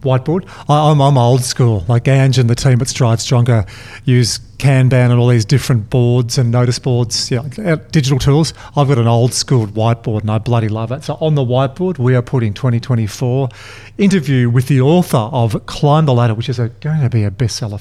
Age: 40-59